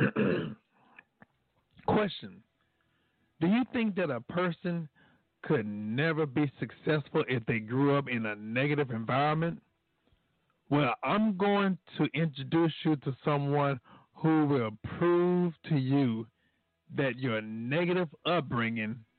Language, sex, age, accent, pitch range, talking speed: English, male, 50-69, American, 120-165 Hz, 115 wpm